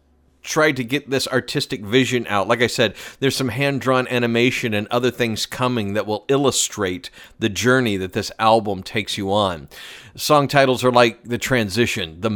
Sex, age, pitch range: male, 40-59, 110-130 Hz